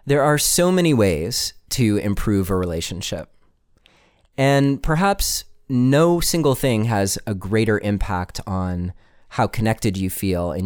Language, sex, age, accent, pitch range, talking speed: English, male, 30-49, American, 100-130 Hz, 135 wpm